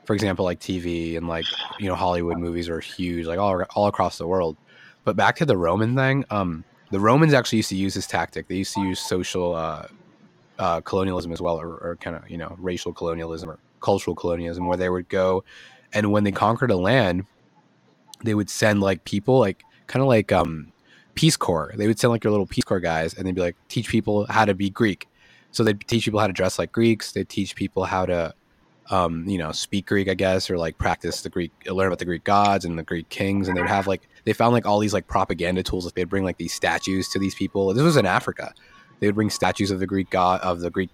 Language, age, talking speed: English, 20-39, 245 wpm